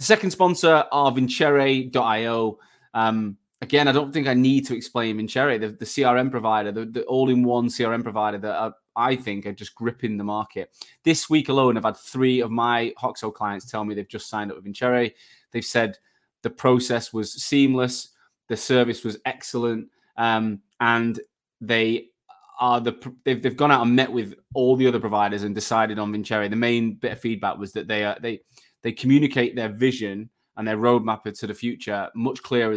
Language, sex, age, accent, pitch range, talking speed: English, male, 20-39, British, 105-130 Hz, 190 wpm